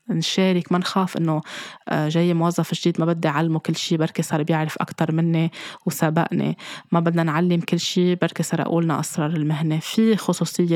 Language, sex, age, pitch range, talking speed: Arabic, female, 20-39, 160-180 Hz, 155 wpm